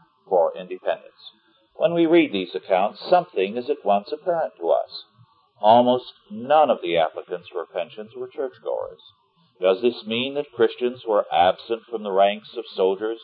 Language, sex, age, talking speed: English, male, 50-69, 155 wpm